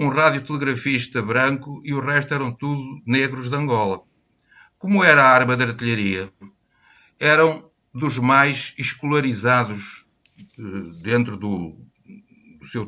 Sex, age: male, 60-79